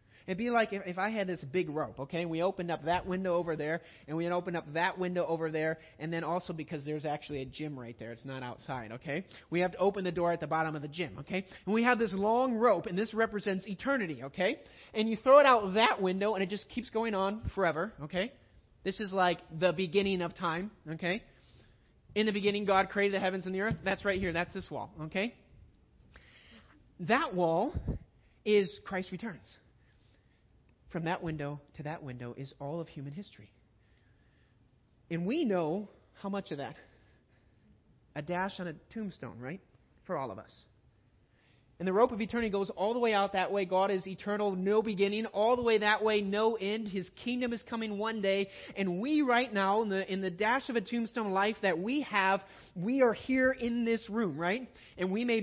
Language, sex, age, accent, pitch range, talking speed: English, male, 30-49, American, 160-215 Hz, 210 wpm